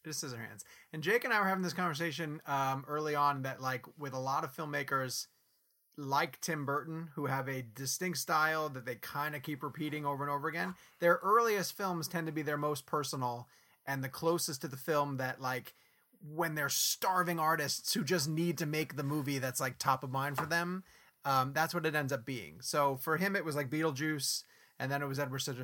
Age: 30-49